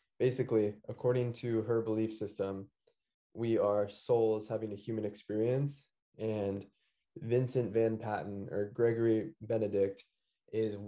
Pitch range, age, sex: 105-120 Hz, 20-39, male